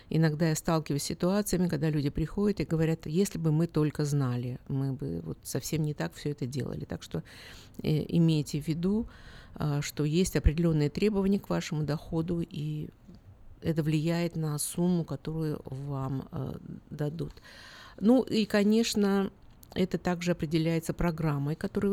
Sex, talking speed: female, 150 wpm